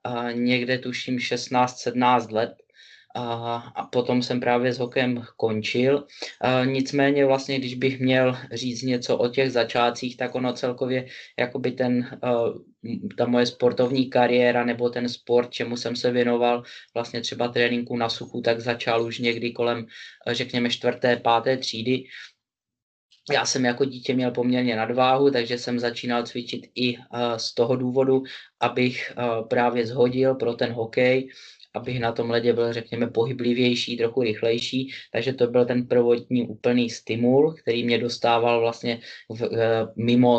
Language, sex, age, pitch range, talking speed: Slovak, male, 20-39, 120-125 Hz, 145 wpm